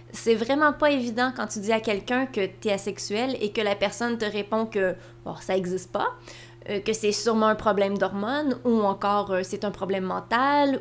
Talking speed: 195 wpm